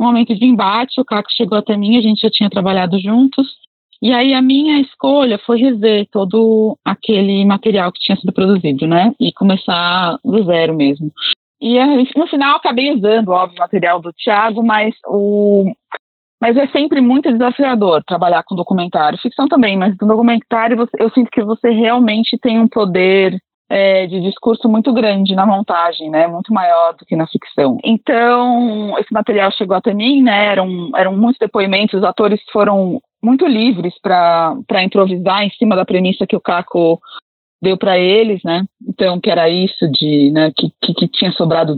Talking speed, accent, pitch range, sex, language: 180 wpm, Brazilian, 180-230 Hz, female, Portuguese